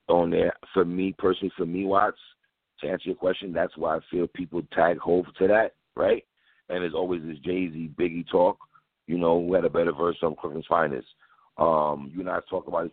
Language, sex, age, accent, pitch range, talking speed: English, male, 50-69, American, 85-100 Hz, 220 wpm